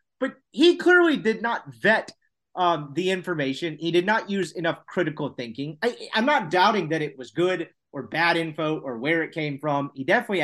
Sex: male